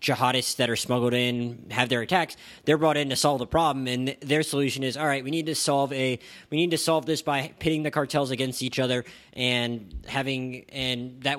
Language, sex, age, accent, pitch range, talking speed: English, male, 20-39, American, 130-165 Hz, 220 wpm